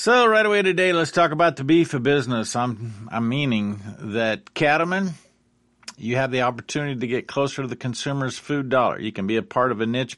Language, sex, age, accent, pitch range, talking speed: English, male, 50-69, American, 120-160 Hz, 210 wpm